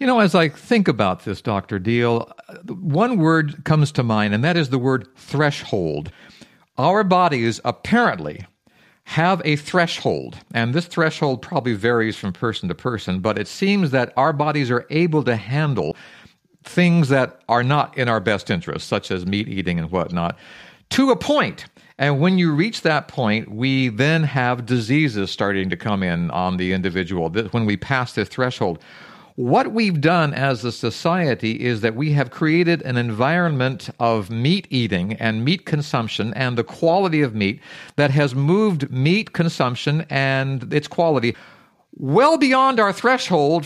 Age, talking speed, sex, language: 50-69, 165 wpm, male, English